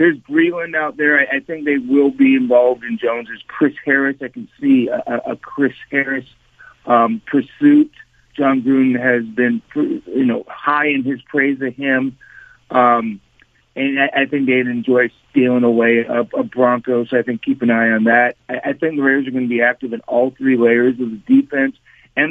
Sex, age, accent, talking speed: male, 50-69, American, 200 wpm